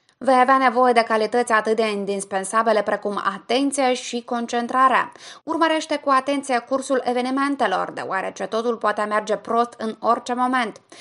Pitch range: 210-270 Hz